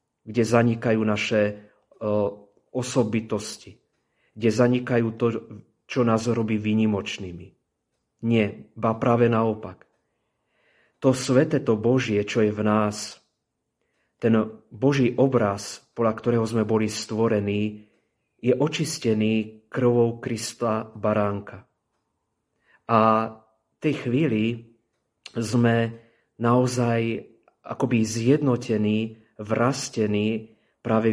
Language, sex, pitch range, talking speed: Slovak, male, 105-120 Hz, 90 wpm